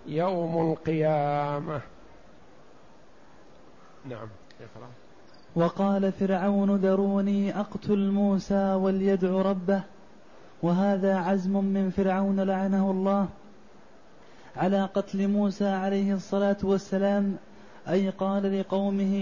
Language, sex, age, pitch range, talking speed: Arabic, male, 20-39, 190-200 Hz, 75 wpm